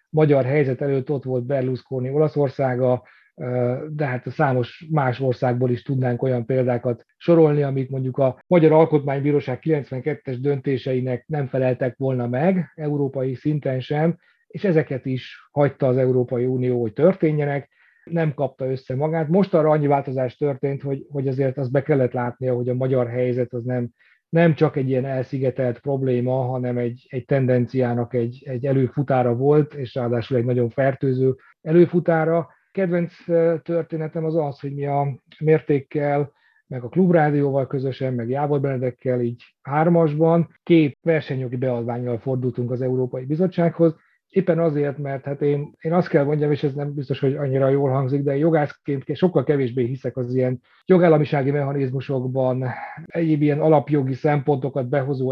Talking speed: 150 wpm